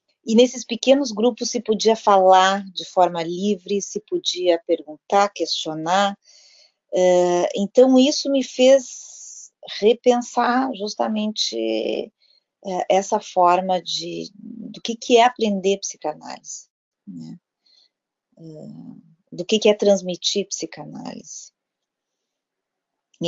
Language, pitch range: Spanish, 165-220 Hz